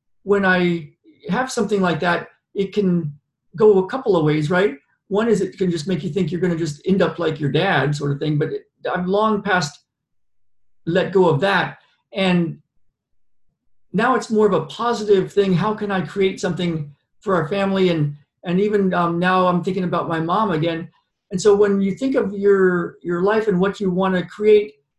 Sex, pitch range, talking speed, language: male, 165-205 Hz, 200 wpm, English